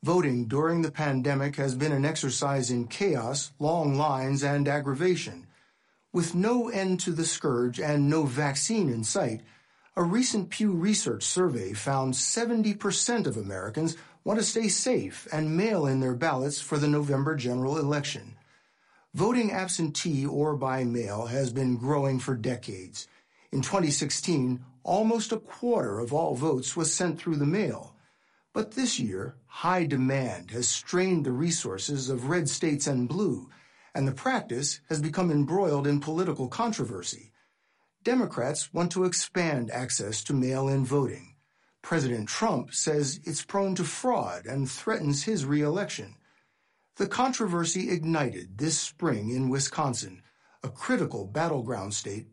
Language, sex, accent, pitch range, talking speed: English, male, American, 130-180 Hz, 140 wpm